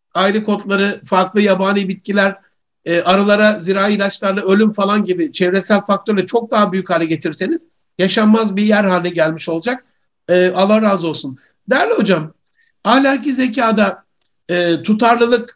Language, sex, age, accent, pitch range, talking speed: Turkish, male, 60-79, native, 185-230 Hz, 125 wpm